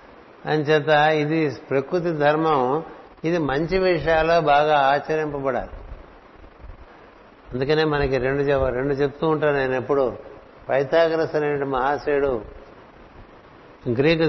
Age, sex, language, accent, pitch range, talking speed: 60-79, male, Telugu, native, 130-155 Hz, 90 wpm